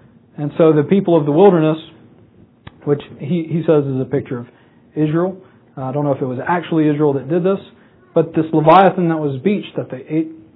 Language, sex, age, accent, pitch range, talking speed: English, male, 40-59, American, 135-175 Hz, 210 wpm